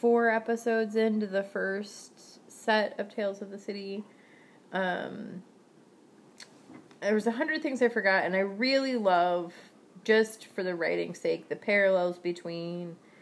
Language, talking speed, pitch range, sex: English, 140 wpm, 175-220 Hz, female